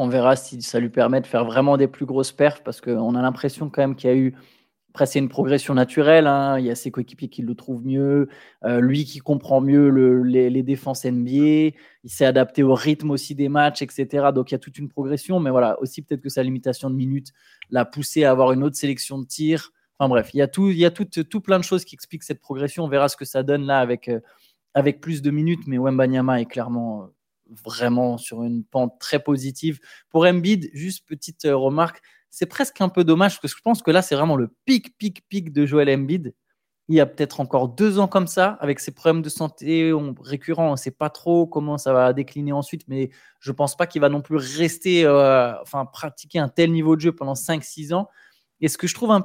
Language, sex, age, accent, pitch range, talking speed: French, male, 20-39, French, 130-160 Hz, 245 wpm